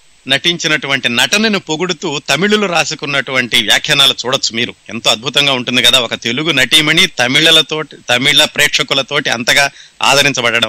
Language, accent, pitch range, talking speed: Telugu, native, 125-155 Hz, 110 wpm